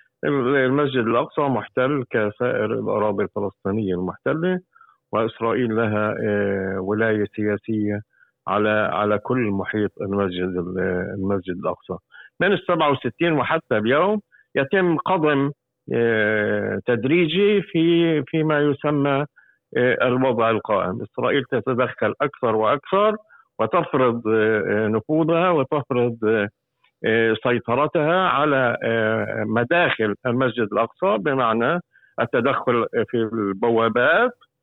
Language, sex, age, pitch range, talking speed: Arabic, male, 50-69, 110-150 Hz, 80 wpm